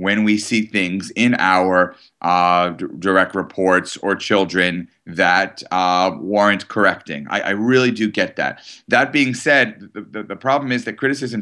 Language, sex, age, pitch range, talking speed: English, male, 30-49, 95-120 Hz, 170 wpm